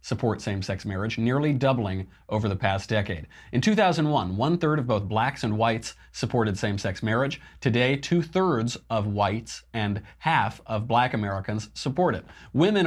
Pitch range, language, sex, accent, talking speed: 100-130 Hz, English, male, American, 150 wpm